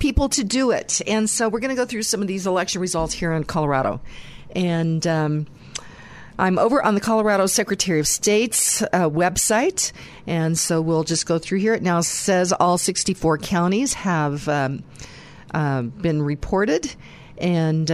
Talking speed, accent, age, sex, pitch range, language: 165 wpm, American, 50-69, female, 150-190 Hz, English